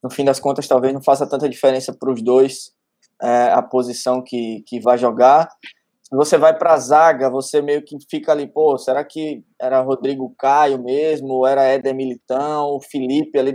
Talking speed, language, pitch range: 190 wpm, Portuguese, 125-145 Hz